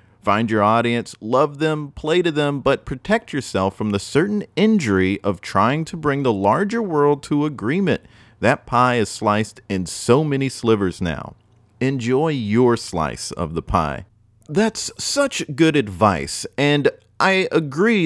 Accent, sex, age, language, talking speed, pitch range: American, male, 30-49, English, 155 wpm, 105-160 Hz